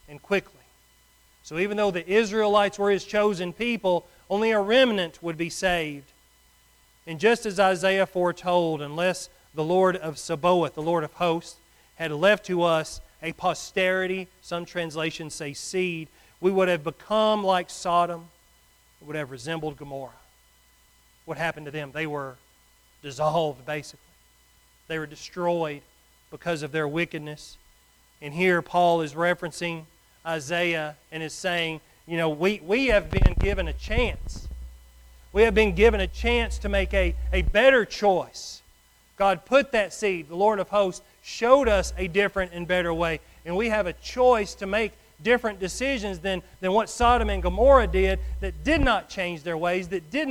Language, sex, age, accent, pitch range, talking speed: English, male, 40-59, American, 145-190 Hz, 160 wpm